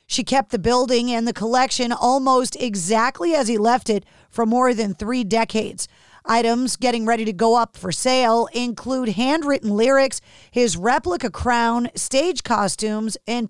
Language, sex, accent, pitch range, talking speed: English, female, American, 220-265 Hz, 155 wpm